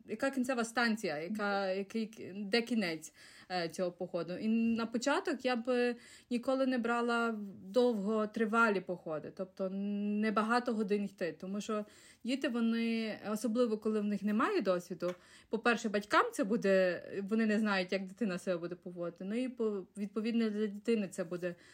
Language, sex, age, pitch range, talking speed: Ukrainian, female, 30-49, 200-245 Hz, 150 wpm